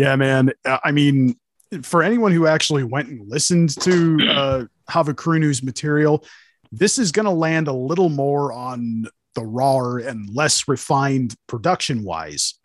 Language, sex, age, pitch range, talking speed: English, male, 30-49, 130-180 Hz, 140 wpm